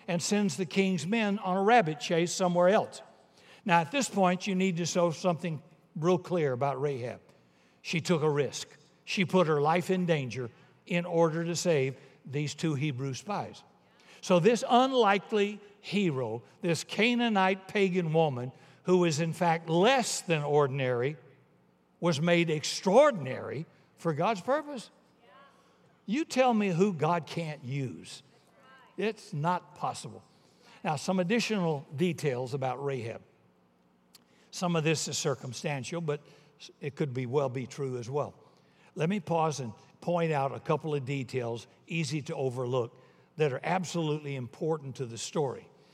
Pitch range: 135-180 Hz